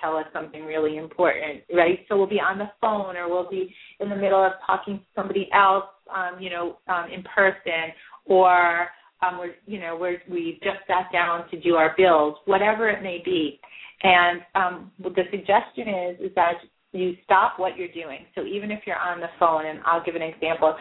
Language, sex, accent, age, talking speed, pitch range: English, female, American, 30-49, 210 wpm, 165-195 Hz